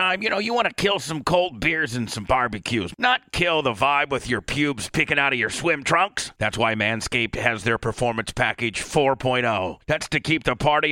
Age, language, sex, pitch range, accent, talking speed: 40-59, English, male, 125-165 Hz, American, 210 wpm